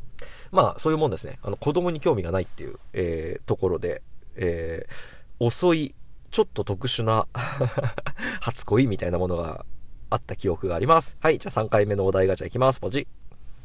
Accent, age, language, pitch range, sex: native, 40-59, Japanese, 95-160 Hz, male